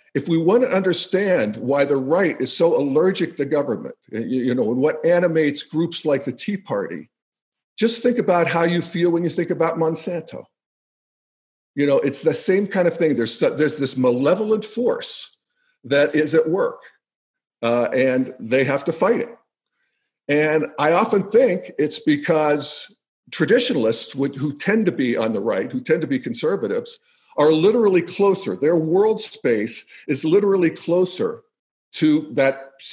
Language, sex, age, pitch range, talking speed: English, male, 50-69, 145-205 Hz, 160 wpm